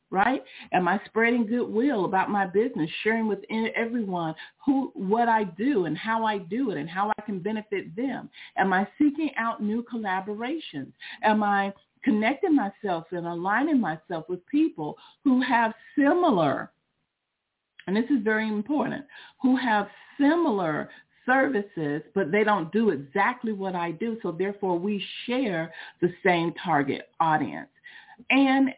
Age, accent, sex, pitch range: 50-69, American, female, 185-255 Hz